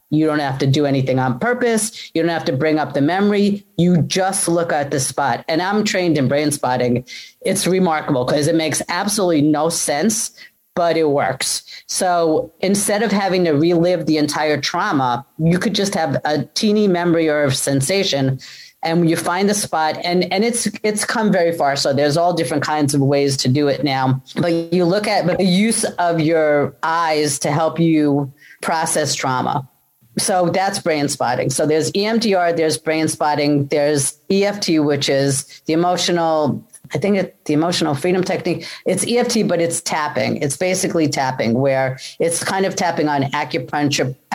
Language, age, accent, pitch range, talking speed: English, 40-59, American, 145-180 Hz, 175 wpm